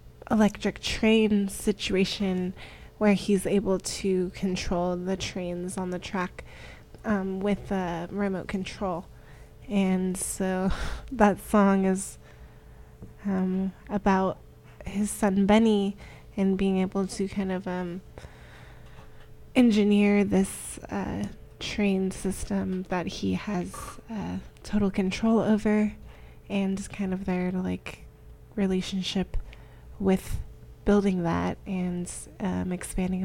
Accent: American